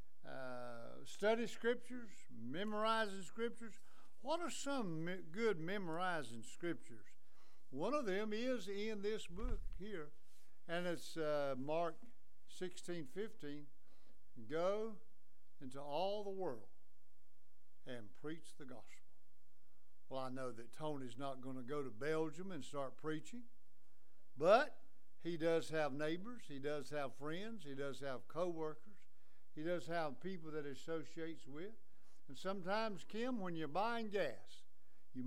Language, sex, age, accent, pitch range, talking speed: English, male, 60-79, American, 135-195 Hz, 130 wpm